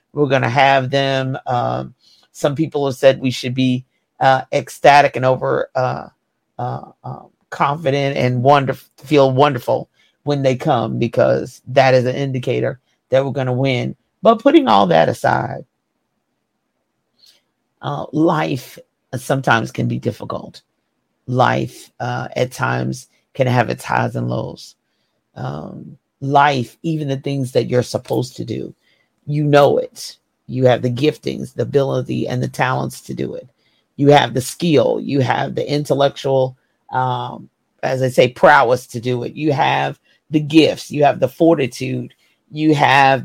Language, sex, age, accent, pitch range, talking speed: English, male, 50-69, American, 125-145 Hz, 150 wpm